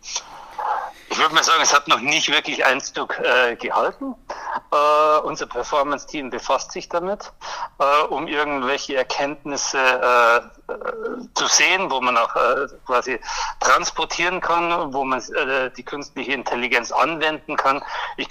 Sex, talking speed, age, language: male, 130 wpm, 60-79, German